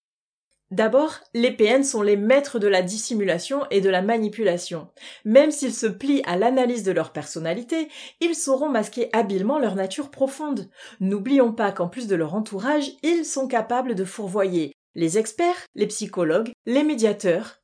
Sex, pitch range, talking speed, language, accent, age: female, 190-275 Hz, 160 wpm, French, French, 30-49